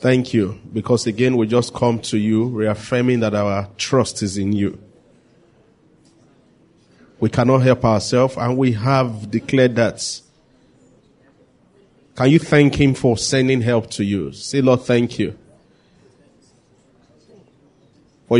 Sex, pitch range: male, 120-150 Hz